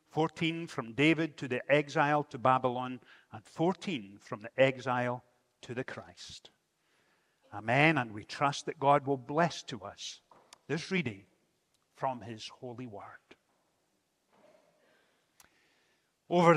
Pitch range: 140-185 Hz